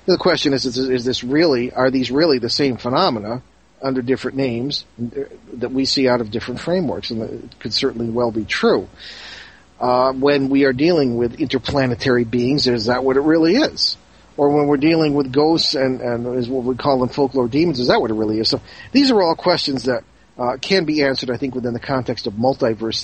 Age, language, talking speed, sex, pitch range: 40-59, English, 215 wpm, male, 120-145 Hz